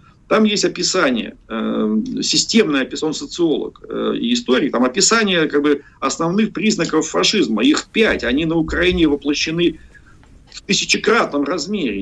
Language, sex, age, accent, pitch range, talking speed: Russian, male, 40-59, native, 130-215 Hz, 125 wpm